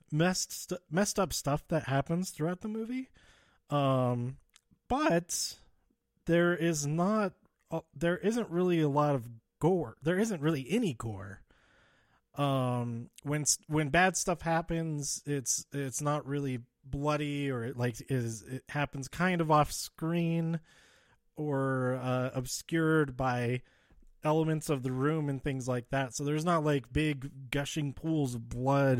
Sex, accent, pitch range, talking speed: male, American, 125-165 Hz, 145 wpm